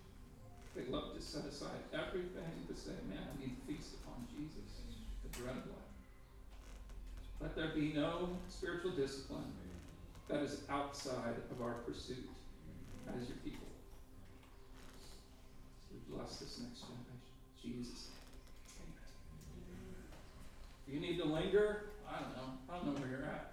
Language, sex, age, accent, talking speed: English, male, 40-59, American, 135 wpm